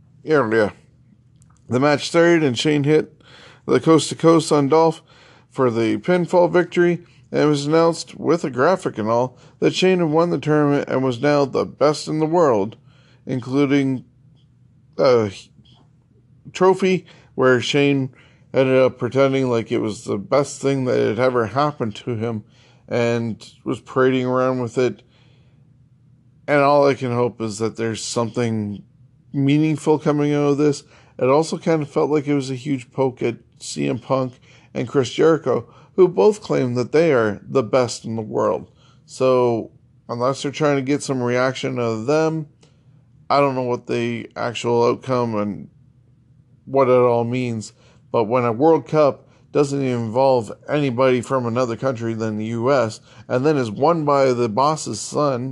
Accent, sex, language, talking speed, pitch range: American, male, English, 165 wpm, 120-145 Hz